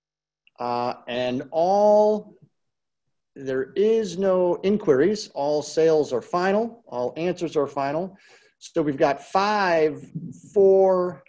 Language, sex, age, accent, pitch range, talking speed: English, male, 40-59, American, 145-180 Hz, 105 wpm